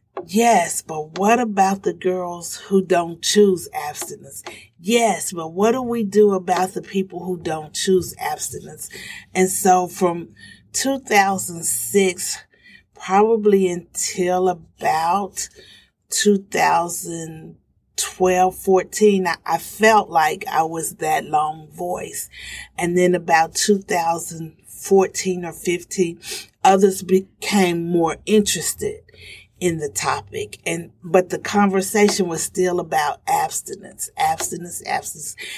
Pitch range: 170-205 Hz